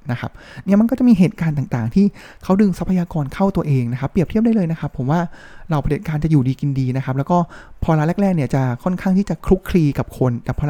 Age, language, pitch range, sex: 20-39, Thai, 130-175 Hz, male